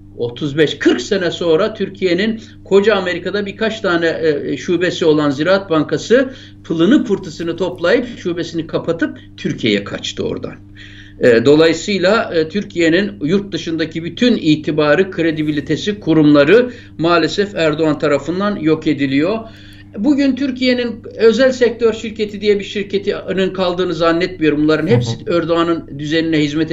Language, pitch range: Turkish, 140-195 Hz